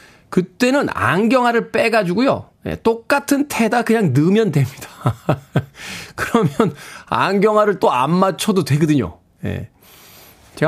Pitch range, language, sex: 125-185 Hz, Korean, male